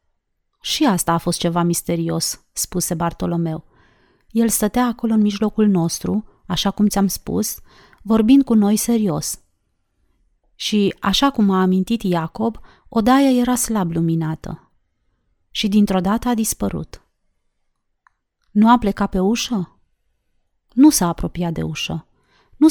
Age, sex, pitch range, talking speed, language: 30-49, female, 180-230 Hz, 125 wpm, Romanian